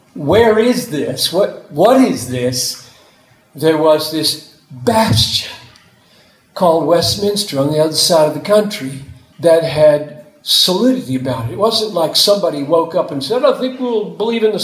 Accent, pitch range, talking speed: American, 140-195 Hz, 170 wpm